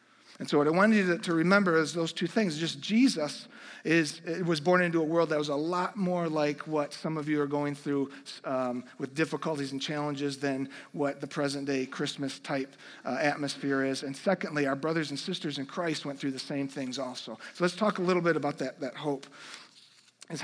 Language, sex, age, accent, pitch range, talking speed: English, male, 40-59, American, 145-185 Hz, 210 wpm